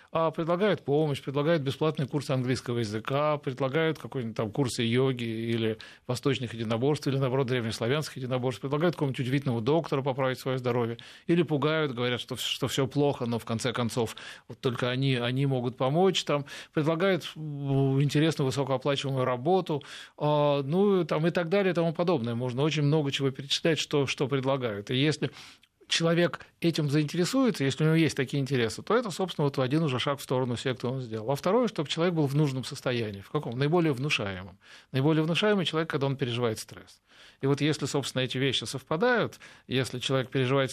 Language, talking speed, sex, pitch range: Russian, 175 wpm, male, 125-155 Hz